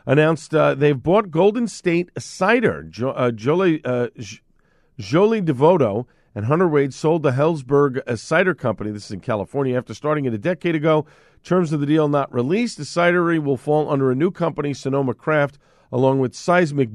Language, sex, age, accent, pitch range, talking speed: English, male, 50-69, American, 115-160 Hz, 175 wpm